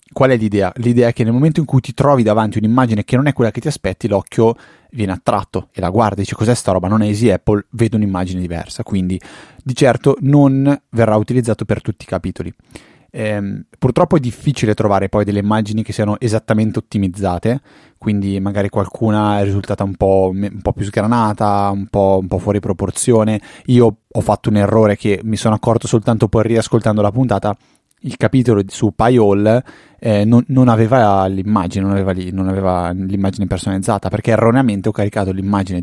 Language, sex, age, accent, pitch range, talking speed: Italian, male, 20-39, native, 100-120 Hz, 185 wpm